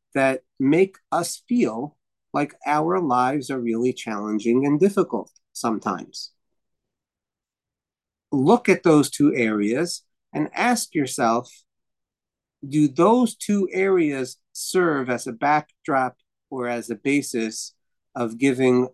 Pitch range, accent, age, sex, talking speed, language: 115-150 Hz, American, 40-59, male, 110 wpm, English